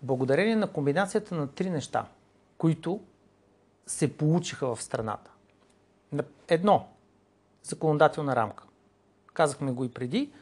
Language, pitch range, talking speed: Bulgarian, 115-160 Hz, 105 wpm